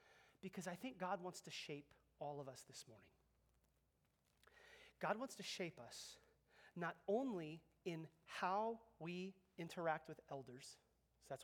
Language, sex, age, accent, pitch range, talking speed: English, male, 30-49, American, 150-205 Hz, 140 wpm